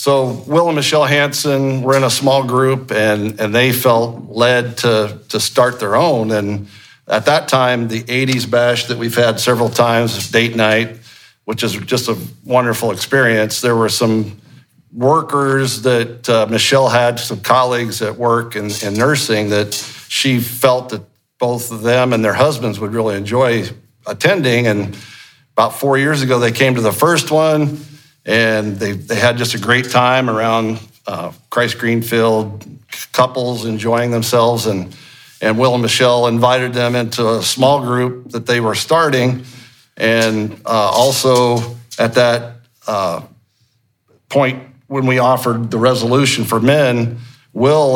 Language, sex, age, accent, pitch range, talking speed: English, male, 50-69, American, 115-130 Hz, 155 wpm